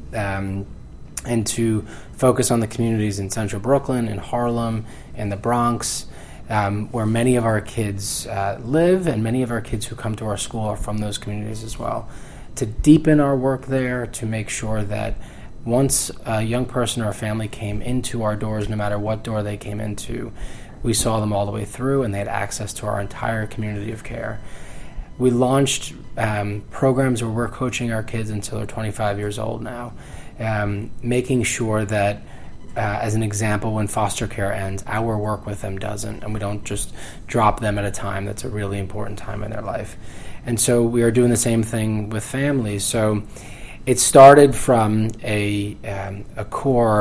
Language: English